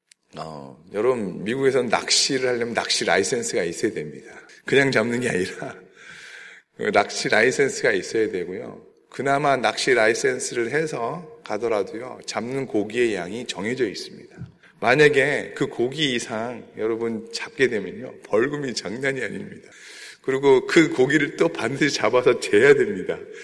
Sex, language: male, Korean